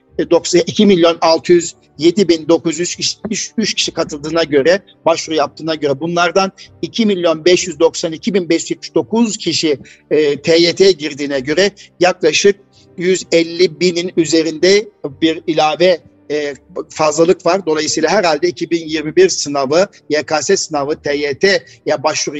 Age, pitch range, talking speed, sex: 60-79, 155-185 Hz, 100 wpm, male